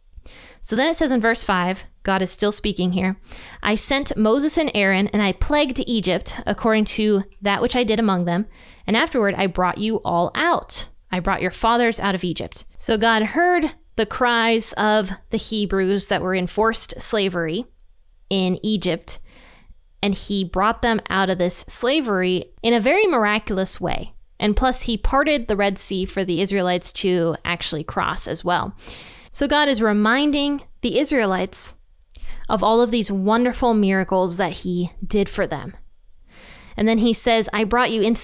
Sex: female